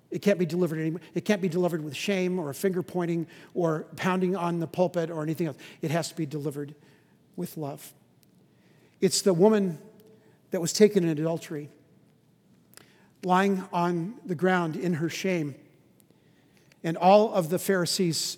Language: English